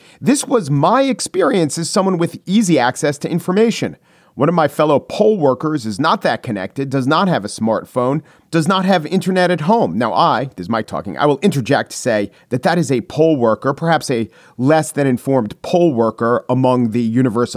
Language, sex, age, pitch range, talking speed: English, male, 40-59, 130-185 Hz, 200 wpm